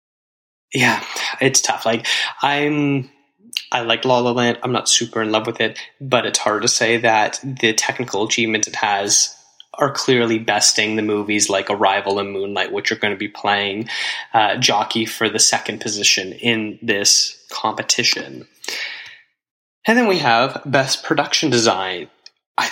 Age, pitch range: 10-29, 110-125 Hz